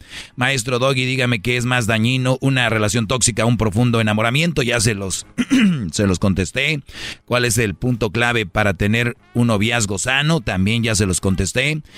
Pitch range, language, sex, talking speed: 110-140 Hz, Spanish, male, 170 wpm